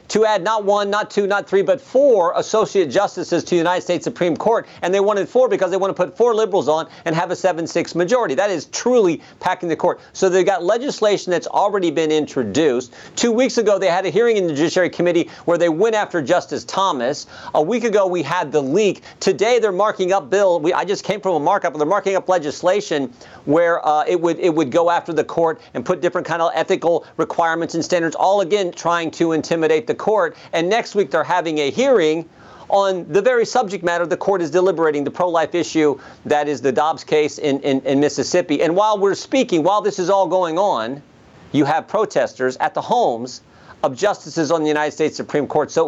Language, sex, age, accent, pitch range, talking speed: English, male, 50-69, American, 160-195 Hz, 220 wpm